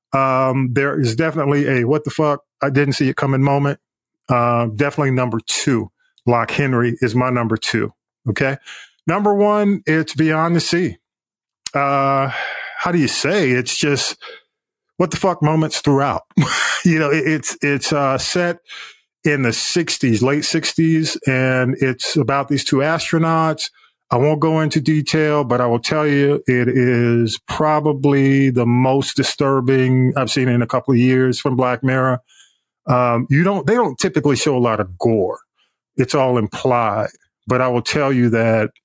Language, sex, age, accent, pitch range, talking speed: English, male, 40-59, American, 125-155 Hz, 165 wpm